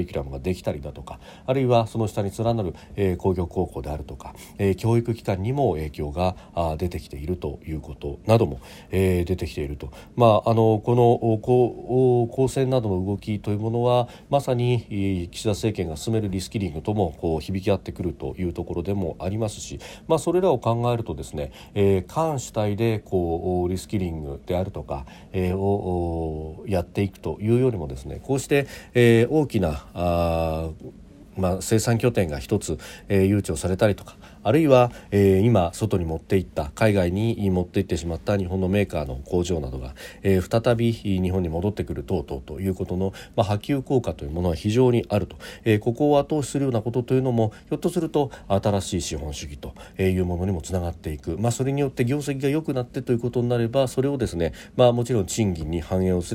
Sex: male